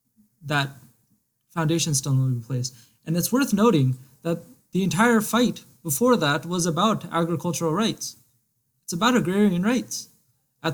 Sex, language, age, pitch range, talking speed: male, English, 20-39, 130-175 Hz, 135 wpm